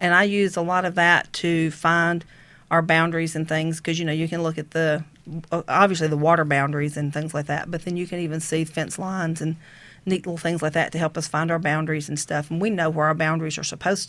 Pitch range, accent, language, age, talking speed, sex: 155-170 Hz, American, English, 40-59, 250 wpm, female